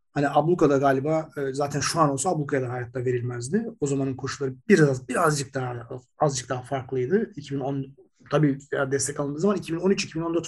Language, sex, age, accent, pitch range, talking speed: Turkish, male, 40-59, native, 135-190 Hz, 150 wpm